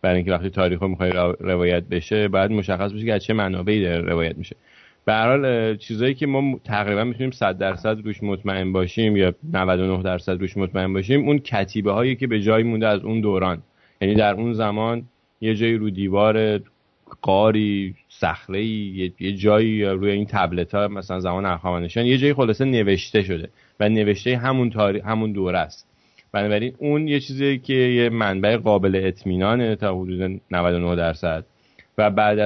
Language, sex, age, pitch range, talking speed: Persian, male, 30-49, 95-115 Hz, 165 wpm